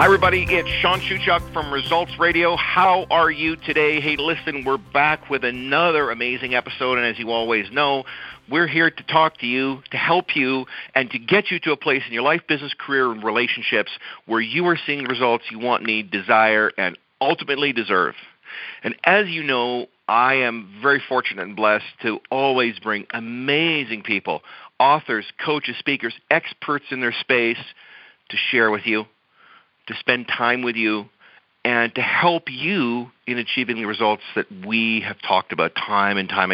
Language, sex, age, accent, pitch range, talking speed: English, male, 50-69, American, 110-150 Hz, 175 wpm